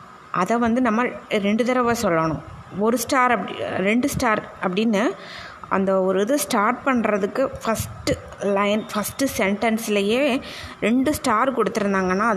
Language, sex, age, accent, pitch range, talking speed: Tamil, female, 20-39, native, 200-245 Hz, 115 wpm